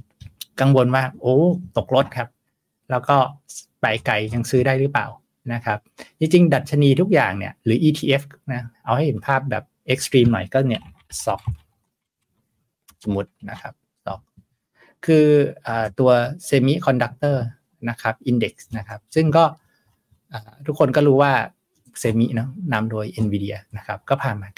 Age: 60-79